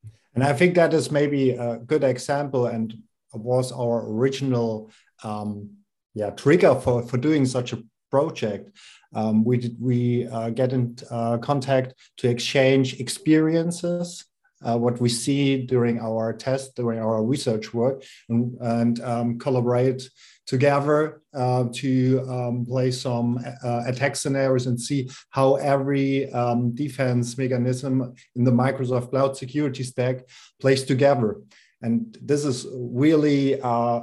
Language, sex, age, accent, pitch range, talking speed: English, male, 50-69, German, 115-135 Hz, 140 wpm